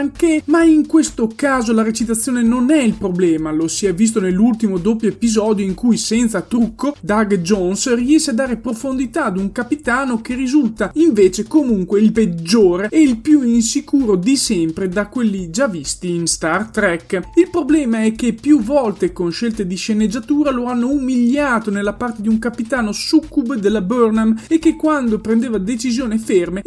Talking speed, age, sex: 175 wpm, 30-49, male